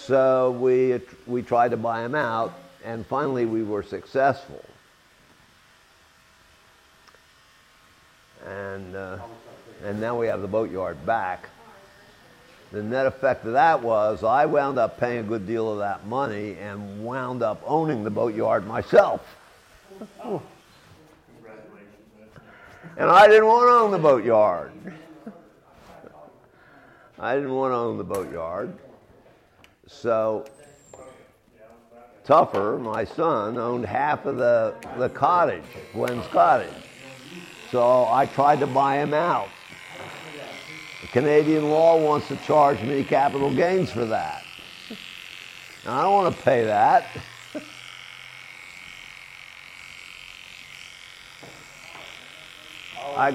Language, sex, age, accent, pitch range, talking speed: English, male, 50-69, American, 100-135 Hz, 110 wpm